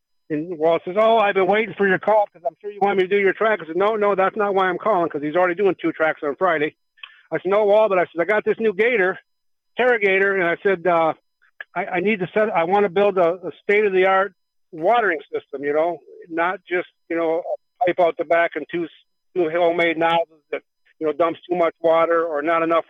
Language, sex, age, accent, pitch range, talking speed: English, male, 50-69, American, 155-190 Hz, 245 wpm